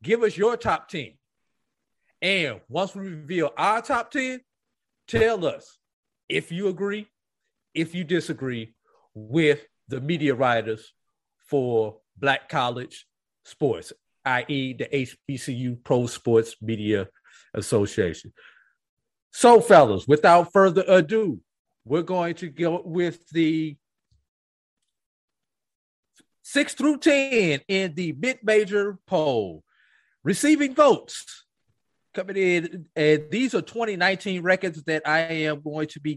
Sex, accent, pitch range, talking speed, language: male, American, 140-205 Hz, 115 wpm, English